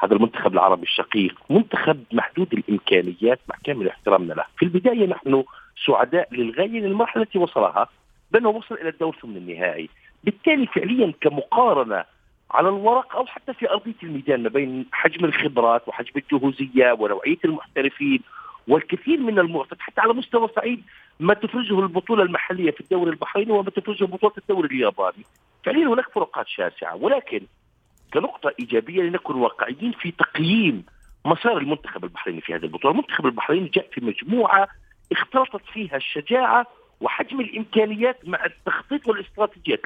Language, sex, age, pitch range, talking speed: Arabic, male, 50-69, 160-240 Hz, 140 wpm